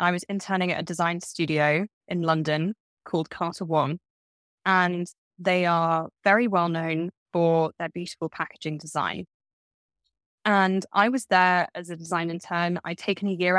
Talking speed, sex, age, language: 155 wpm, female, 10-29, English